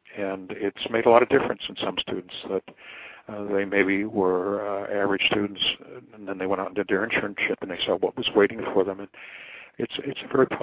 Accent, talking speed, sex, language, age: American, 225 wpm, male, English, 60-79